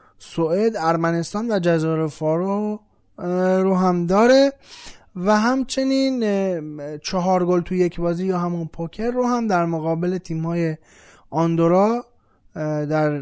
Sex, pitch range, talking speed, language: male, 150-210 Hz, 120 wpm, Persian